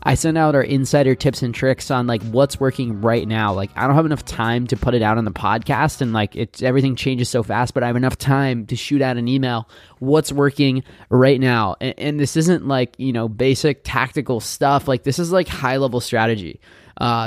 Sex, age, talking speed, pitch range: male, 20-39, 230 wpm, 115-130 Hz